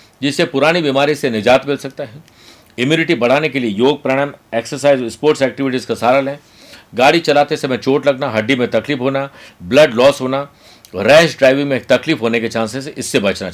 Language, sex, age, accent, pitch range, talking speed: Hindi, male, 50-69, native, 125-160 Hz, 185 wpm